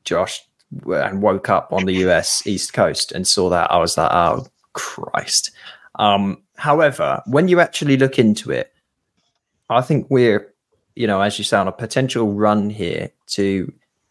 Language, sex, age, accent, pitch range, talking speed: English, male, 20-39, British, 100-130 Hz, 165 wpm